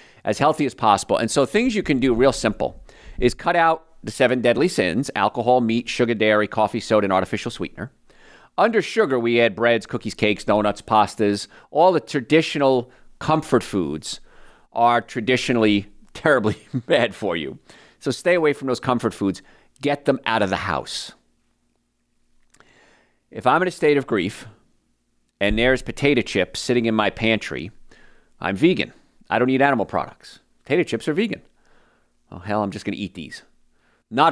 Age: 40-59